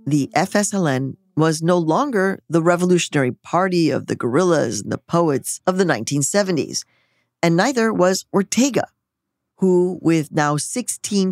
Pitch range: 130-175 Hz